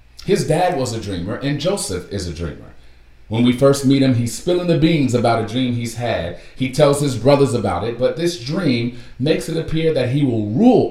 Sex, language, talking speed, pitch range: male, English, 220 wpm, 75-115 Hz